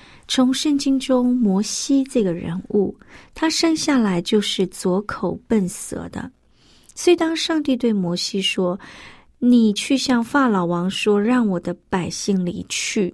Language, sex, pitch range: Chinese, female, 195-265 Hz